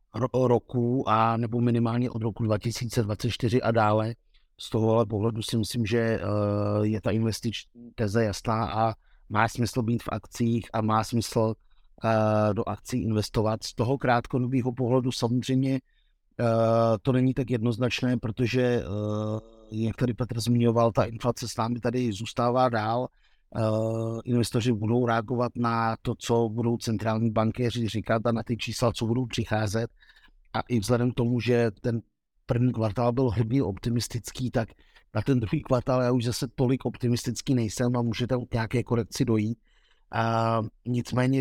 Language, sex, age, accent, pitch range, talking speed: Czech, male, 50-69, native, 110-125 Hz, 145 wpm